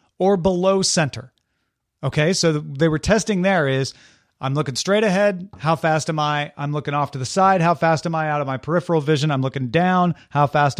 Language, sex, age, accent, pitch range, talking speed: English, male, 40-59, American, 140-185 Hz, 210 wpm